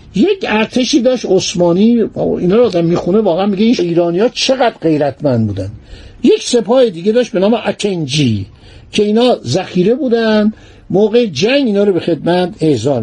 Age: 60-79